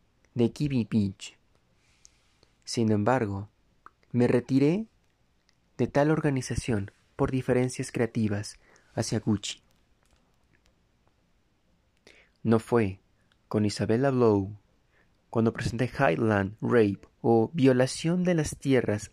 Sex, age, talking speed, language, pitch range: male, 30-49, 90 wpm, Spanish, 105-125 Hz